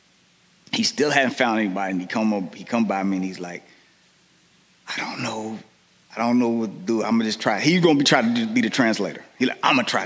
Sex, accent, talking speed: male, American, 240 wpm